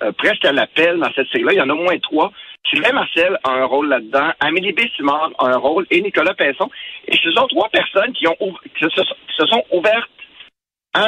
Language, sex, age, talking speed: French, male, 60-79, 240 wpm